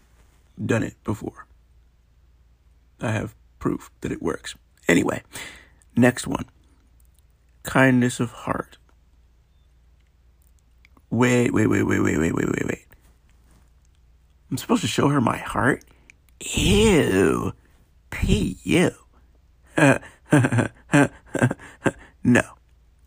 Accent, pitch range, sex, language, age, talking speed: American, 70-120 Hz, male, English, 50-69, 90 wpm